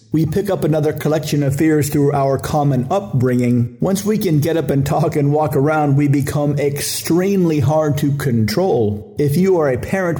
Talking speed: 190 wpm